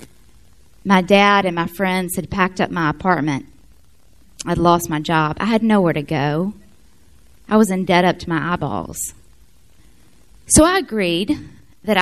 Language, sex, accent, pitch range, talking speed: English, female, American, 165-210 Hz, 155 wpm